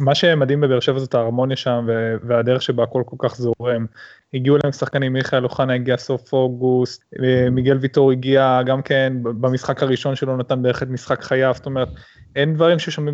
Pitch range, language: 125-145 Hz, Hebrew